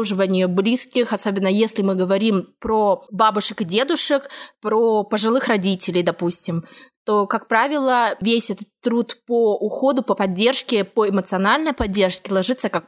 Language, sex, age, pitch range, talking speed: Russian, female, 20-39, 195-260 Hz, 130 wpm